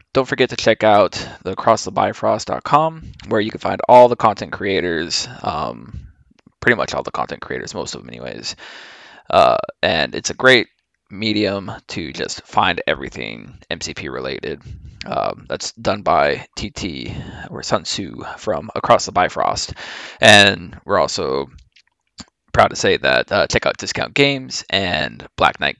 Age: 20-39